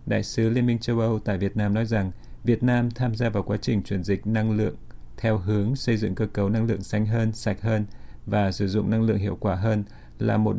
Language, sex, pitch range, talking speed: Vietnamese, male, 100-115 Hz, 250 wpm